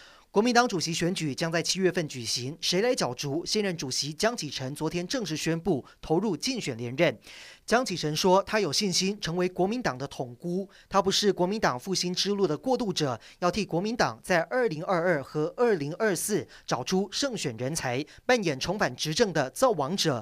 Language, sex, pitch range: Chinese, male, 150-205 Hz